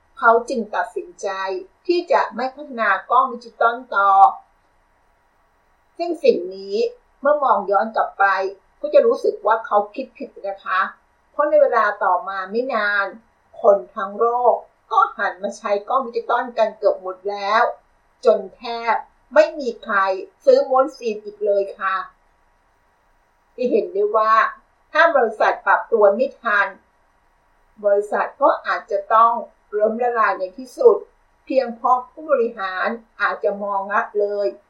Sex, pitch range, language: female, 200-265 Hz, Thai